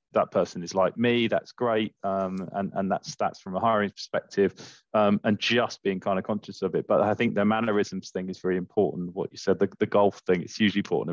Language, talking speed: English, 235 wpm